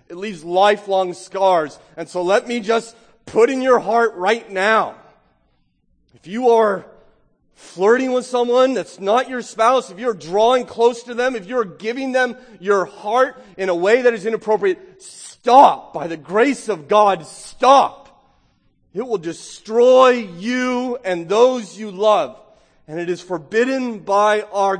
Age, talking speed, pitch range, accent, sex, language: 30-49, 155 wpm, 135-225 Hz, American, male, English